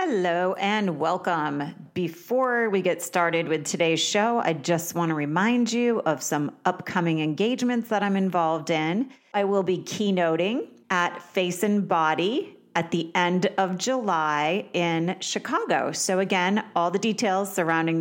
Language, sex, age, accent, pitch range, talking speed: English, female, 30-49, American, 165-205 Hz, 150 wpm